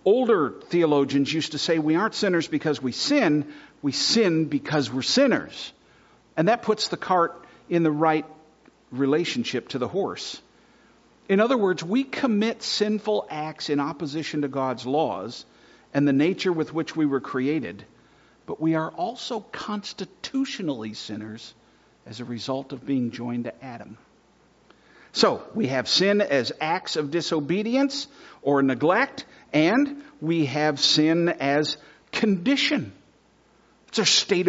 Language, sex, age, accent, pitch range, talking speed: English, male, 50-69, American, 145-210 Hz, 140 wpm